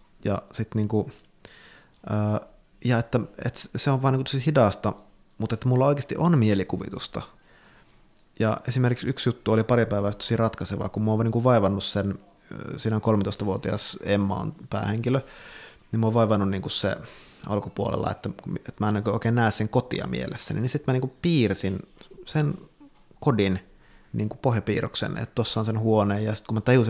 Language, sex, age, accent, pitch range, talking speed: Finnish, male, 20-39, native, 105-120 Hz, 165 wpm